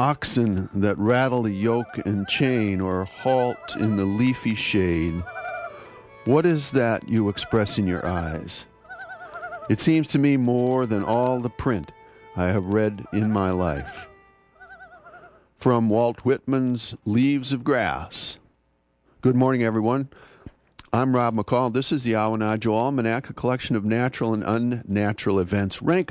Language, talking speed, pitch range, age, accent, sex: English, 140 wpm, 100-130 Hz, 50-69, American, male